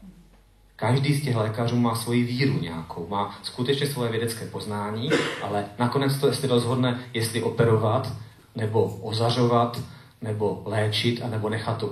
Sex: male